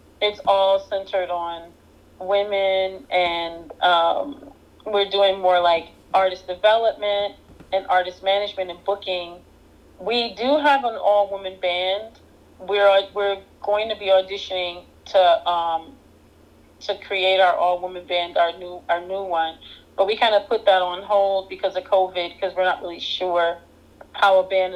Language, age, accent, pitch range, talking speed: English, 30-49, American, 175-200 Hz, 150 wpm